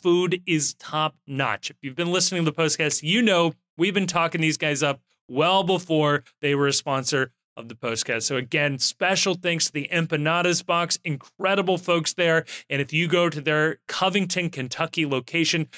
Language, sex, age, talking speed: English, male, 30-49, 180 wpm